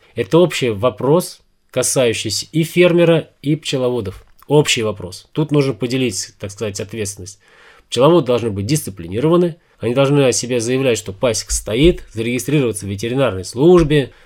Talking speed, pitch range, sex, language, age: 135 wpm, 105-150 Hz, male, Russian, 20-39